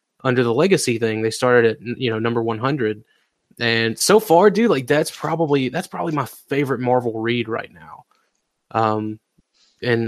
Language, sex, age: English, male, 20-39